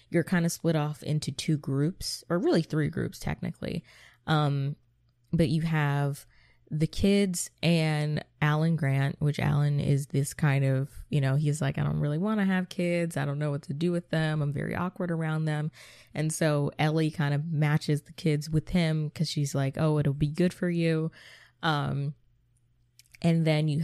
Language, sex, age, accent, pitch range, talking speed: English, female, 20-39, American, 145-170 Hz, 190 wpm